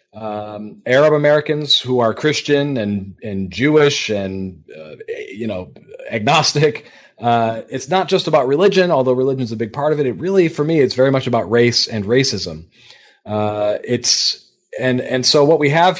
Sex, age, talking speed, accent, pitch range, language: male, 40-59, 175 wpm, American, 110-140 Hz, English